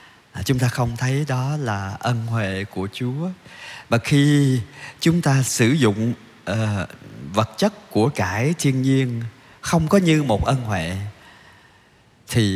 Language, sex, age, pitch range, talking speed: Vietnamese, male, 20-39, 100-135 Hz, 140 wpm